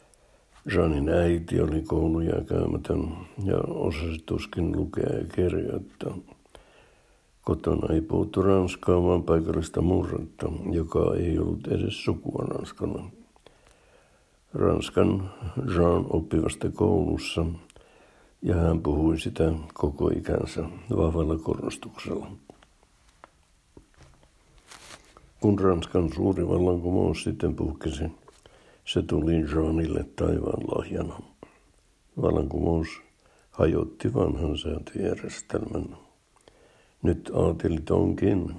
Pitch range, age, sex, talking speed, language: 80-95 Hz, 60-79, male, 85 wpm, Finnish